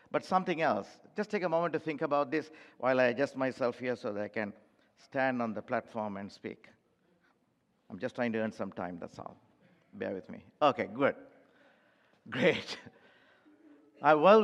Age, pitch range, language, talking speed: 50-69, 140-200 Hz, English, 175 wpm